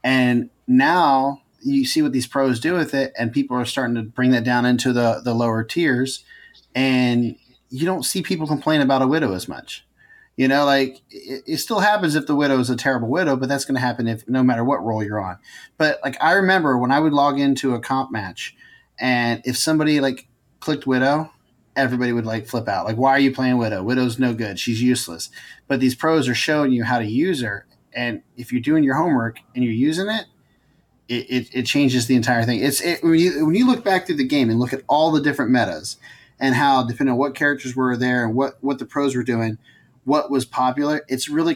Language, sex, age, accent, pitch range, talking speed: English, male, 30-49, American, 125-150 Hz, 230 wpm